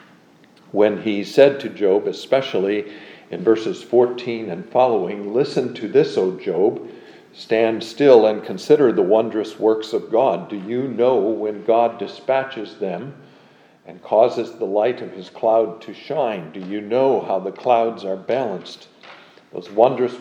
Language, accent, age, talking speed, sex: English, American, 50-69, 150 wpm, male